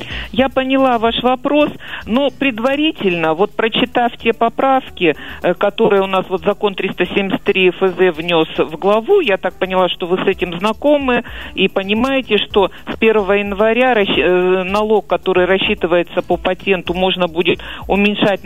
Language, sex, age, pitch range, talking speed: Russian, male, 50-69, 190-235 Hz, 140 wpm